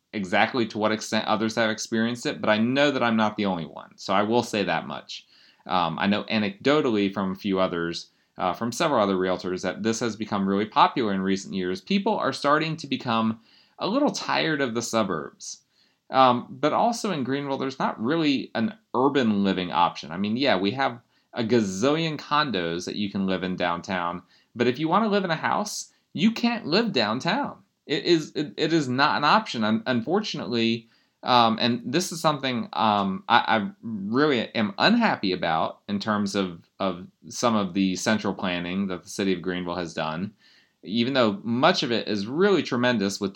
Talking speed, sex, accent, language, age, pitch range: 195 wpm, male, American, English, 30-49, 100-135 Hz